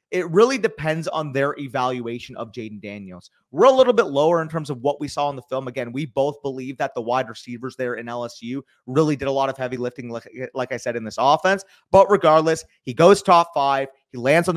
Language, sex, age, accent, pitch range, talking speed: English, male, 30-49, American, 135-180 Hz, 235 wpm